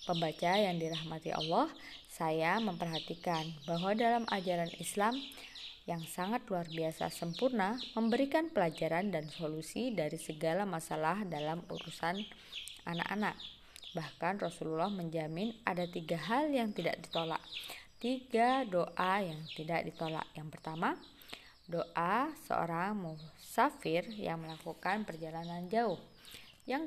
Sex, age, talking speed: female, 20-39, 110 wpm